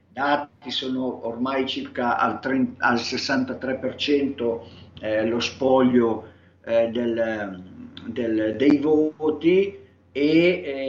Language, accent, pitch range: Italian, native, 120-155 Hz